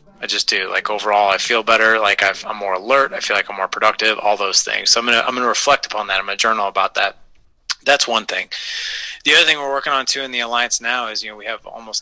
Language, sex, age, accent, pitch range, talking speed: English, male, 30-49, American, 105-130 Hz, 270 wpm